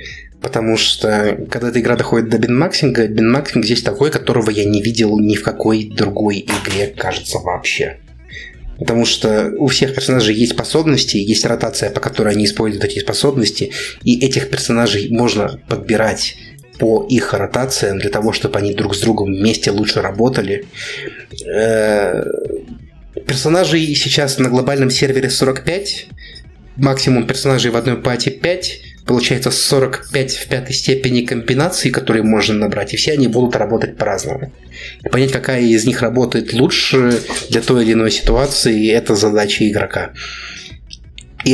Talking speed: 140 wpm